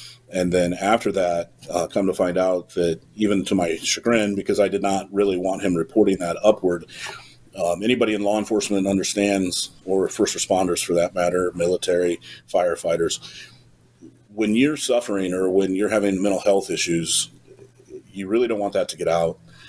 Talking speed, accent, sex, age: 170 wpm, American, male, 40-59